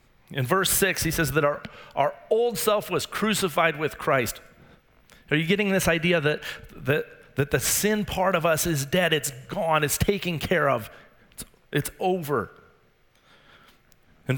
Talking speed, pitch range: 165 wpm, 135-175 Hz